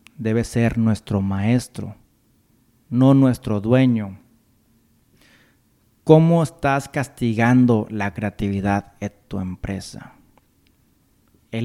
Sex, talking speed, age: male, 80 wpm, 40-59